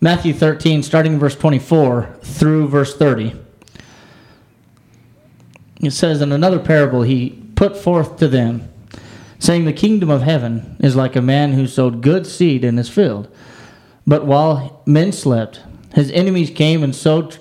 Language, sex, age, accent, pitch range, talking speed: English, male, 40-59, American, 125-165 Hz, 150 wpm